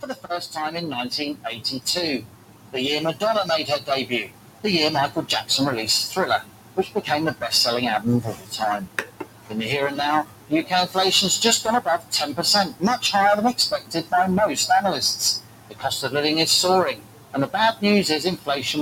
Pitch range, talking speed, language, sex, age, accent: 130-200 Hz, 185 wpm, English, male, 40-59, British